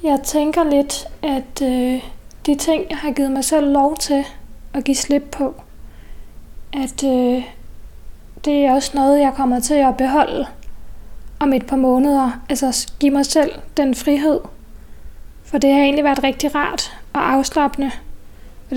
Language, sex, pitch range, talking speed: Danish, female, 260-290 Hz, 150 wpm